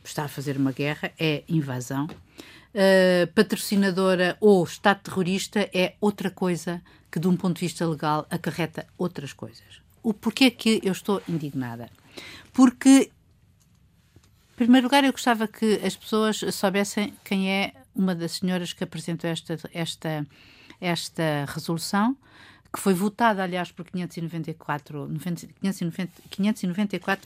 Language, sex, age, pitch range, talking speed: Portuguese, female, 50-69, 160-200 Hz, 125 wpm